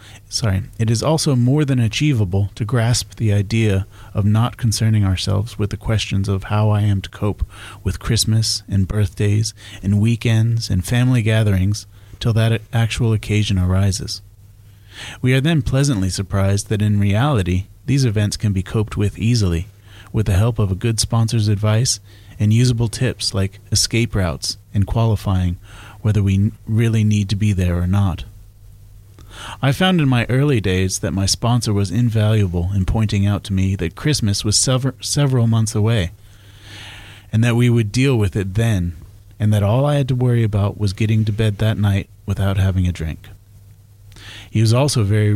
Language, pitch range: English, 100-115 Hz